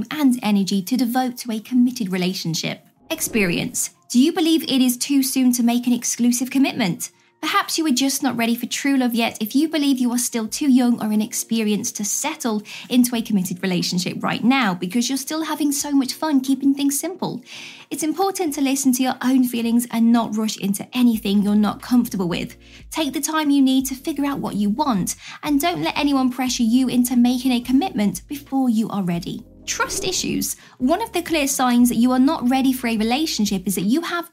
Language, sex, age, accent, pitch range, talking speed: English, female, 20-39, British, 225-280 Hz, 210 wpm